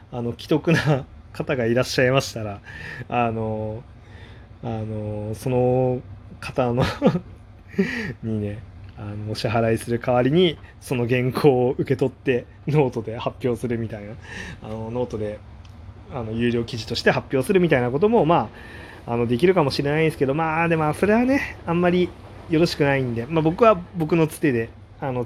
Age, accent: 20-39, native